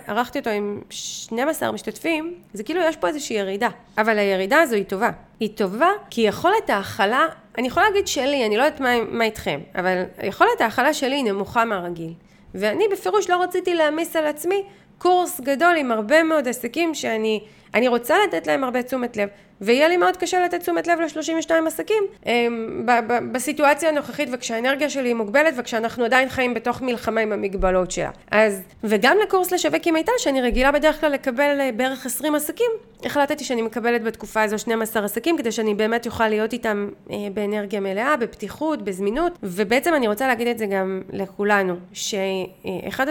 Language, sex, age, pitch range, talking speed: Hebrew, female, 30-49, 210-305 Hz, 165 wpm